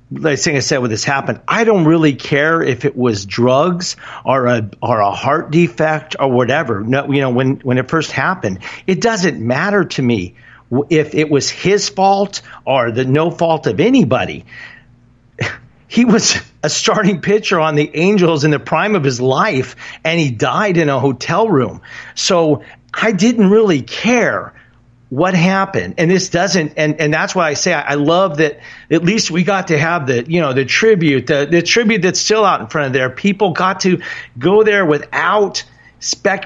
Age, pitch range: 50-69, 130-185 Hz